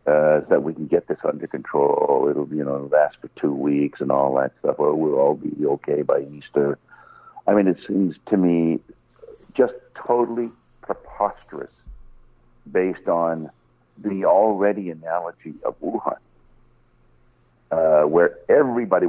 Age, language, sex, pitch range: 60-79, English, male, 70-105 Hz